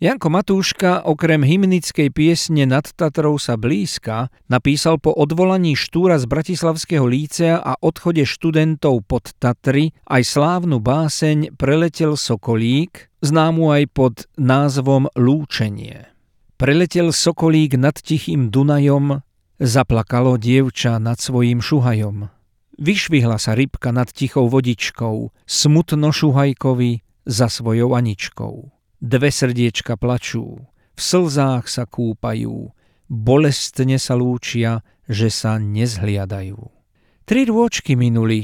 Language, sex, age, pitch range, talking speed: Slovak, male, 50-69, 115-155 Hz, 105 wpm